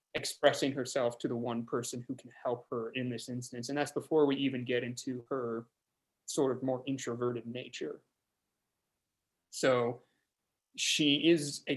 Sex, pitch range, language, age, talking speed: male, 120-135 Hz, English, 20-39, 155 wpm